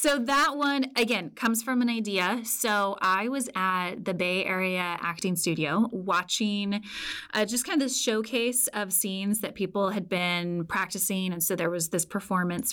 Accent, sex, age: American, female, 20-39